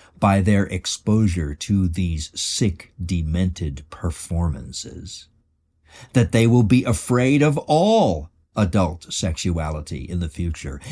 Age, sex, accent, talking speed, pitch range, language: 60-79, male, American, 110 wpm, 80-110 Hz, English